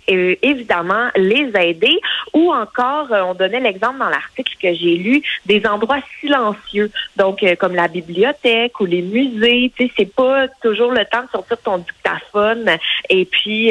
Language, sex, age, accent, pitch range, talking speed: French, female, 30-49, Canadian, 190-250 Hz, 160 wpm